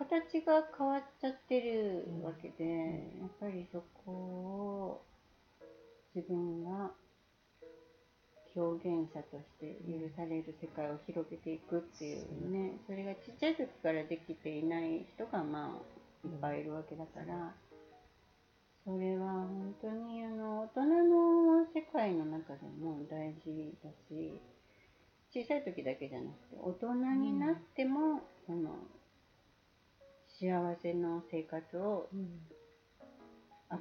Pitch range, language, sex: 160-235 Hz, Japanese, female